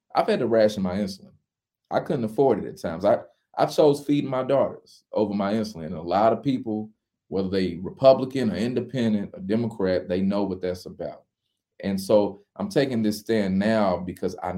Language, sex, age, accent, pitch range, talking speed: English, male, 30-49, American, 95-125 Hz, 195 wpm